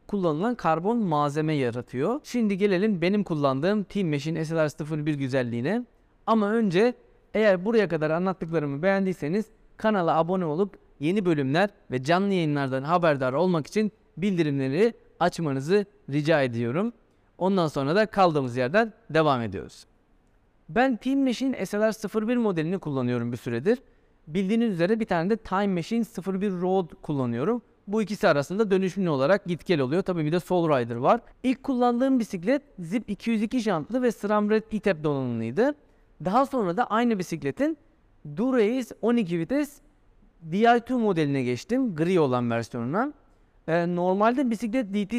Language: Turkish